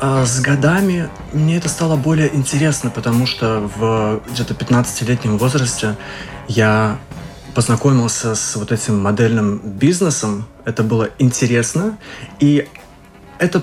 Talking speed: 110 wpm